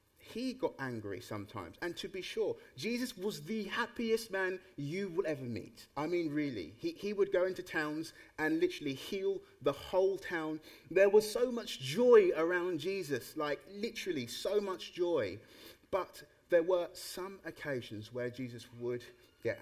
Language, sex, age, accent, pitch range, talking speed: English, male, 30-49, British, 125-180 Hz, 160 wpm